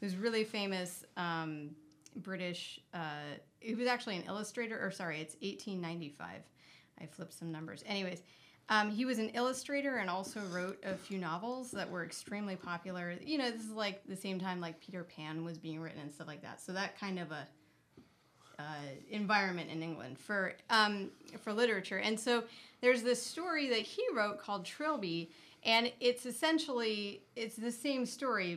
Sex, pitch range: female, 170-220 Hz